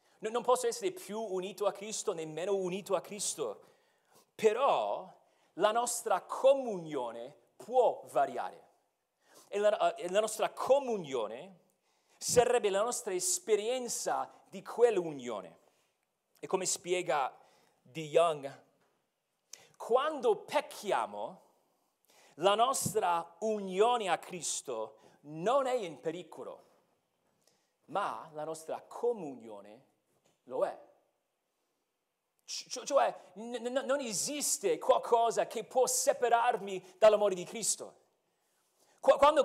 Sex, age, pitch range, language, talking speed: male, 40-59, 185-265 Hz, Italian, 95 wpm